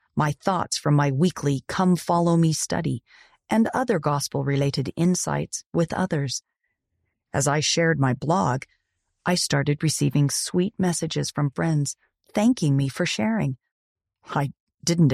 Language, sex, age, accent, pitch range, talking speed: English, female, 40-59, American, 140-190 Hz, 130 wpm